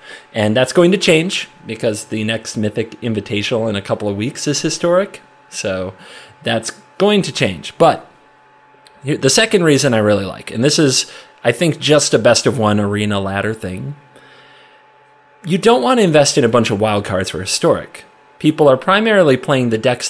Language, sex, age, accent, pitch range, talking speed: English, male, 30-49, American, 105-155 Hz, 175 wpm